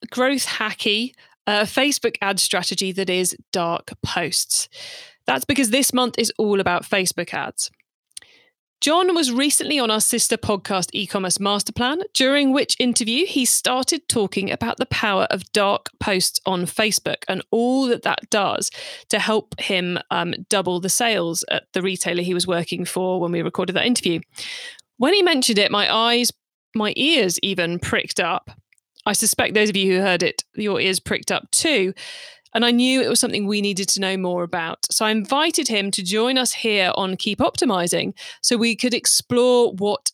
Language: English